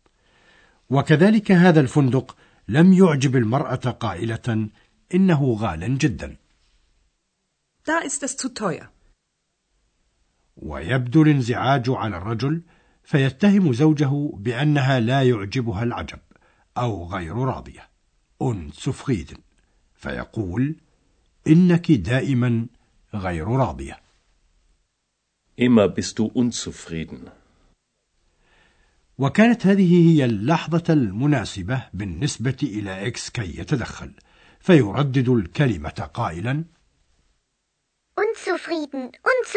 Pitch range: 105-160 Hz